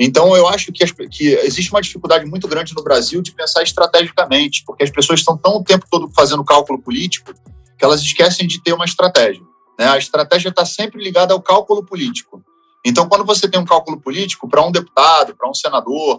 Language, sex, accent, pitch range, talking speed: Portuguese, male, Brazilian, 140-185 Hz, 205 wpm